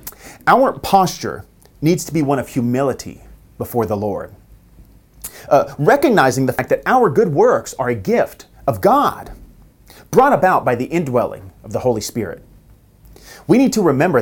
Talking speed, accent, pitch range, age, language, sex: 155 wpm, American, 110-165 Hz, 30-49, English, male